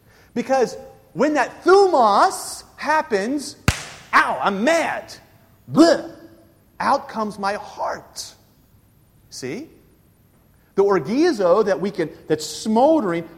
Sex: male